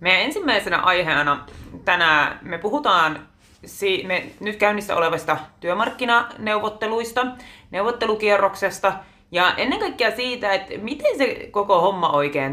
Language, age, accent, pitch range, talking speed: Finnish, 20-39, native, 150-205 Hz, 110 wpm